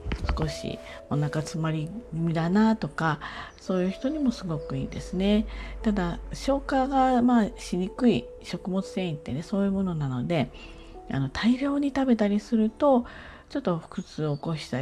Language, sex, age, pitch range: Japanese, female, 40-59, 150-220 Hz